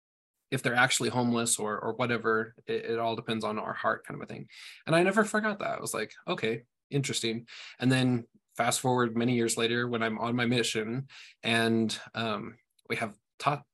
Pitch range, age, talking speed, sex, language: 115-130 Hz, 20-39, 195 wpm, male, English